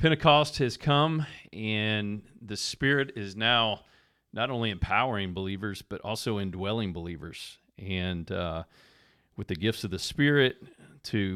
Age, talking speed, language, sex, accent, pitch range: 40-59, 130 wpm, English, male, American, 100-125 Hz